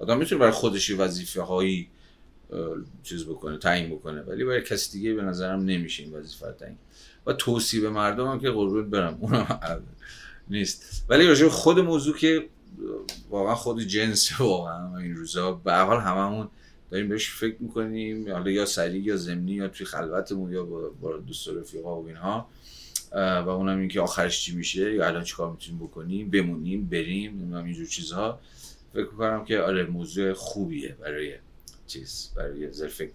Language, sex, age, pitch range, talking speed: Persian, male, 30-49, 75-105 Hz, 165 wpm